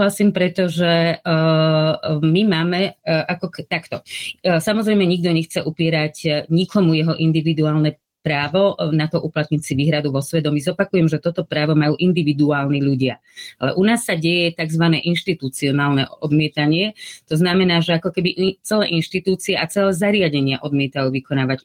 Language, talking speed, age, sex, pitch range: Slovak, 145 wpm, 30-49, female, 150-180 Hz